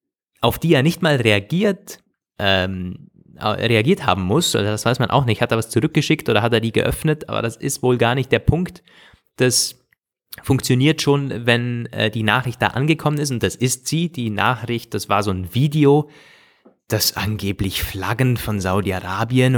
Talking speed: 180 wpm